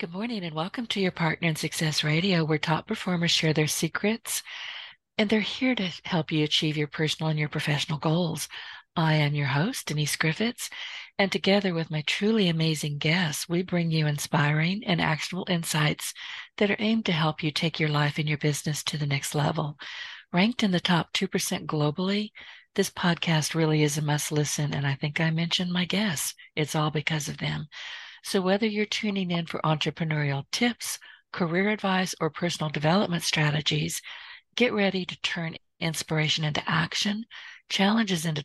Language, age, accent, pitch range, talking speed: English, 50-69, American, 155-195 Hz, 175 wpm